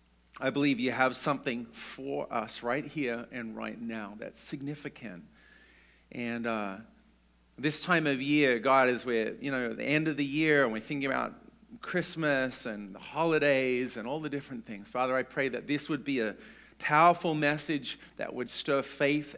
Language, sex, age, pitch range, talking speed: English, male, 40-59, 115-160 Hz, 175 wpm